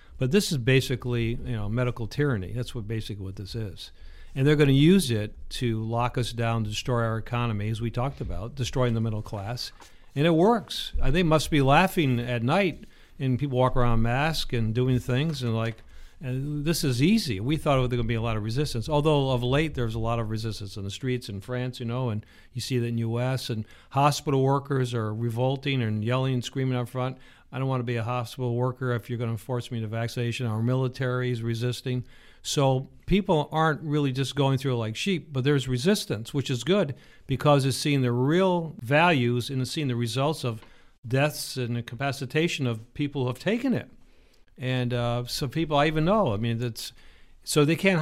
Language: English